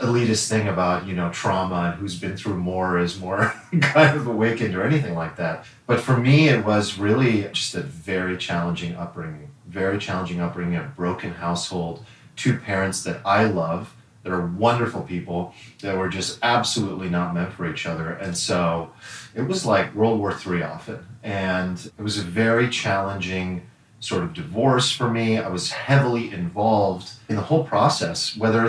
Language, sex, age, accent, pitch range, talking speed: English, male, 30-49, American, 95-120 Hz, 175 wpm